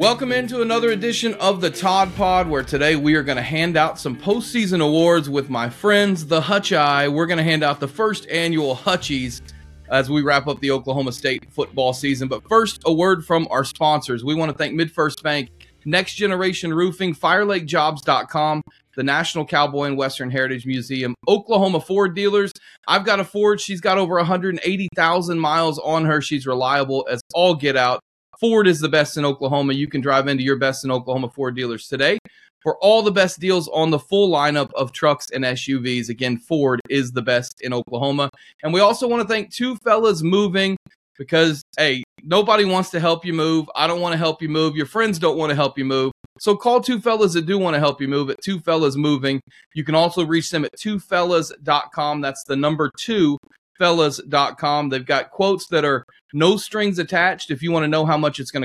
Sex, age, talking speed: male, 30-49, 205 wpm